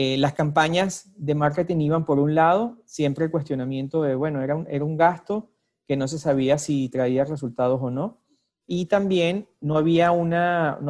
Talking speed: 175 wpm